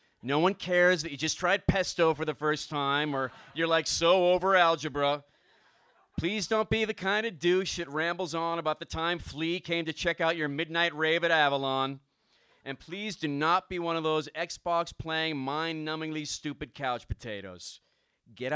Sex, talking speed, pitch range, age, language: male, 180 wpm, 135-170 Hz, 40-59, English